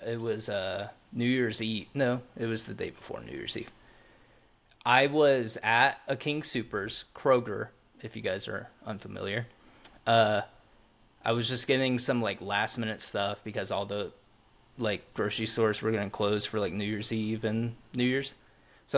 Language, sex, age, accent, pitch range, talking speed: English, male, 20-39, American, 115-135 Hz, 175 wpm